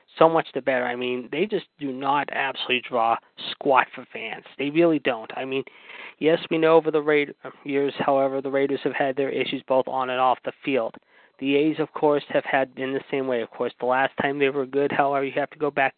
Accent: American